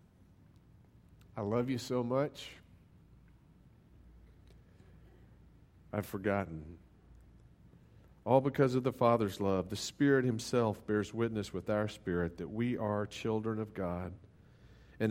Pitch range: 90-120 Hz